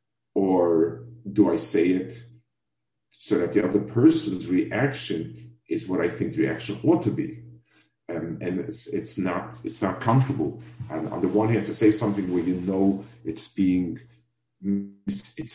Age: 50-69